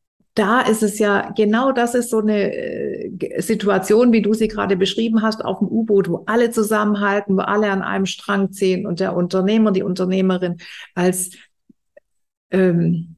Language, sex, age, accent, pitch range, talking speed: German, female, 50-69, German, 185-220 Hz, 165 wpm